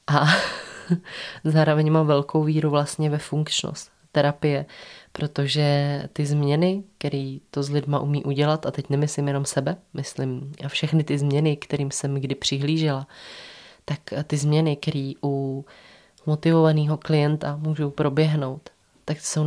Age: 20-39